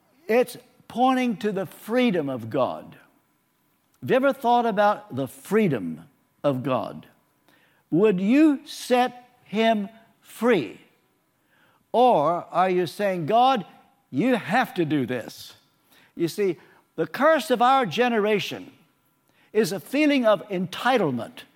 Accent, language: American, English